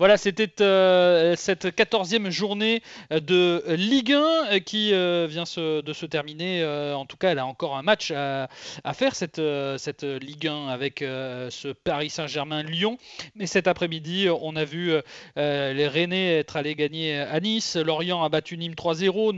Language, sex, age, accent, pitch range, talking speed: French, male, 30-49, French, 155-205 Hz, 165 wpm